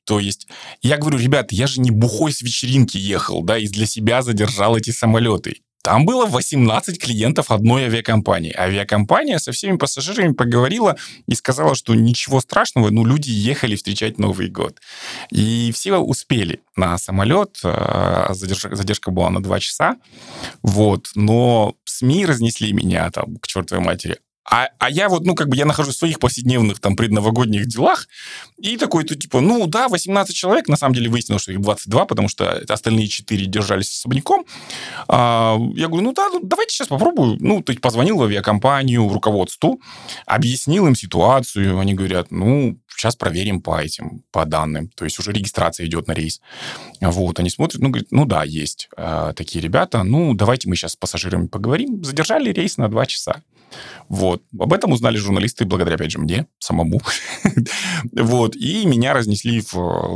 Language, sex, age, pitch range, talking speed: Russian, male, 20-39, 95-130 Hz, 165 wpm